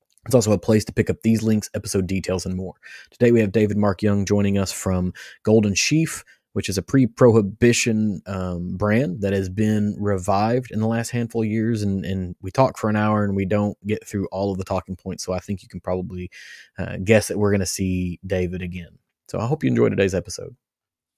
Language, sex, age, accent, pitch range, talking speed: English, male, 20-39, American, 95-110 Hz, 220 wpm